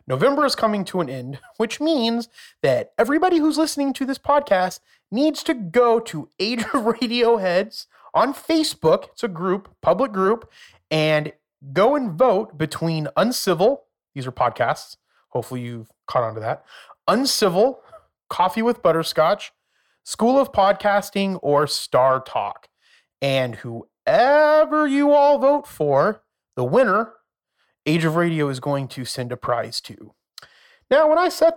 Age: 30-49